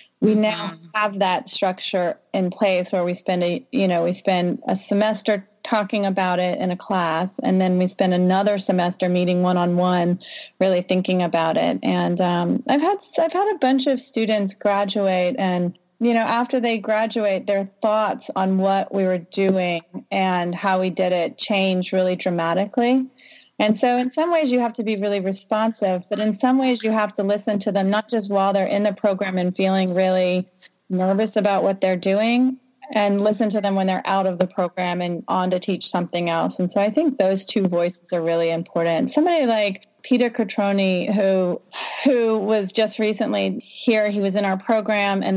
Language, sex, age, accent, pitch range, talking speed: English, female, 30-49, American, 185-215 Hz, 195 wpm